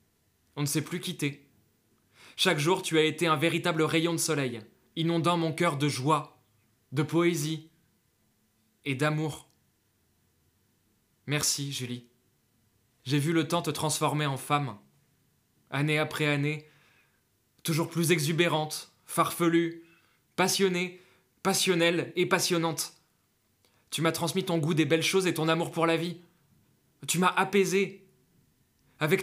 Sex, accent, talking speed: male, French, 130 wpm